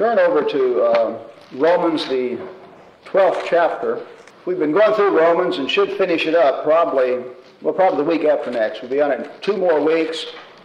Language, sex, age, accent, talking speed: English, male, 50-69, American, 180 wpm